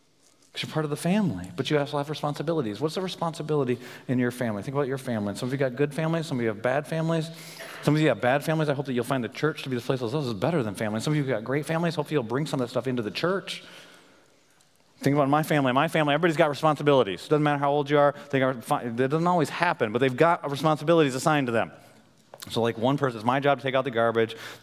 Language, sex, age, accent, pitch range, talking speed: English, male, 30-49, American, 125-165 Hz, 275 wpm